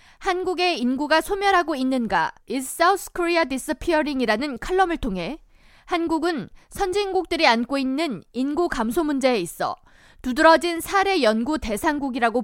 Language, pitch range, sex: Korean, 255-355 Hz, female